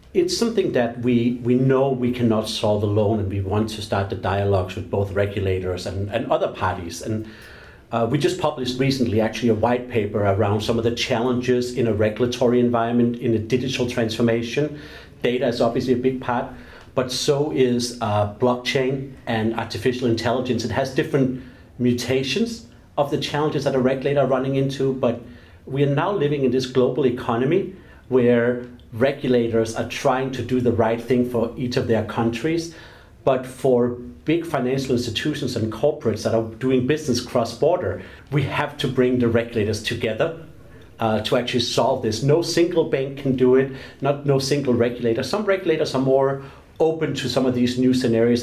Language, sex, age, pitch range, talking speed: English, male, 40-59, 115-135 Hz, 175 wpm